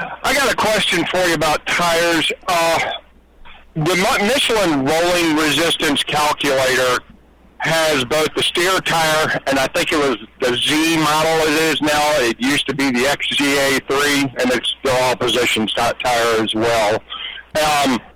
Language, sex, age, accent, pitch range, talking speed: English, male, 50-69, American, 130-165 Hz, 150 wpm